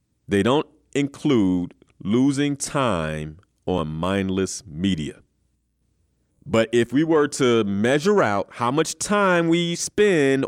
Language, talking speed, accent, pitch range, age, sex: English, 115 wpm, American, 95-145 Hz, 30-49, male